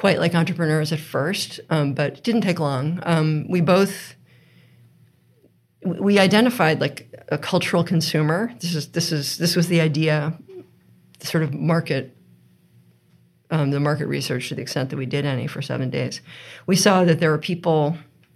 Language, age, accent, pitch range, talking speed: English, 50-69, American, 150-175 Hz, 170 wpm